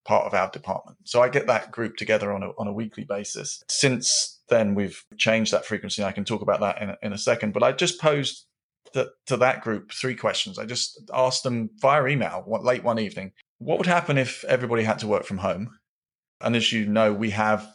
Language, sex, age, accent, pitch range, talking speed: English, male, 30-49, British, 105-125 Hz, 235 wpm